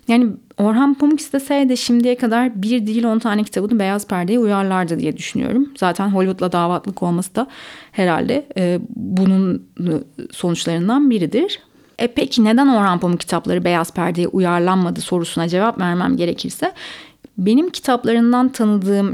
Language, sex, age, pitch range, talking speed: Turkish, female, 30-49, 190-240 Hz, 130 wpm